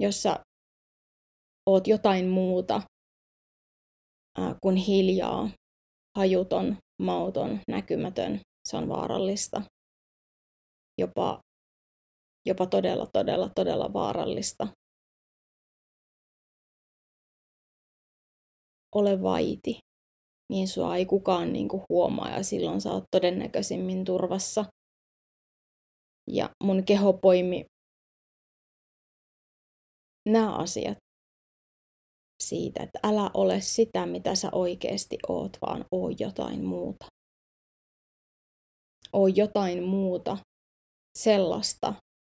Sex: female